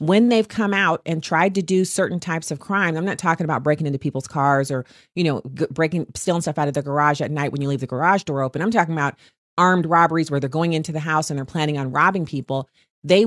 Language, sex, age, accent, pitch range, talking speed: English, female, 40-59, American, 150-195 Hz, 260 wpm